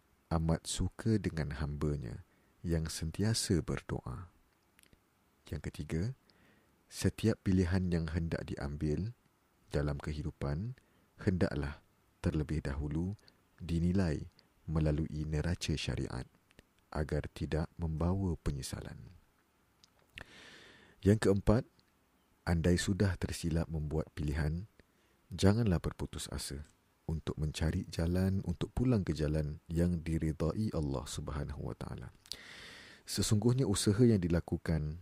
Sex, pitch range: male, 75-95 Hz